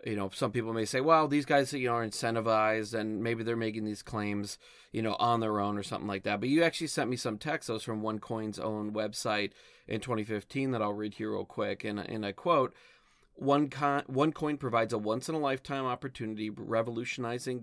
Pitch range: 105-125 Hz